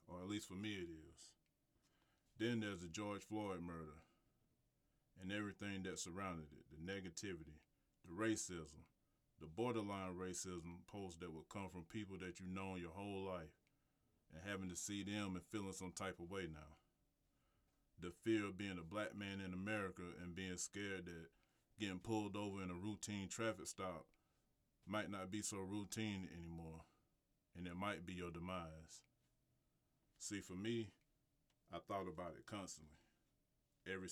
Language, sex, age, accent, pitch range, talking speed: English, male, 30-49, American, 85-100 Hz, 160 wpm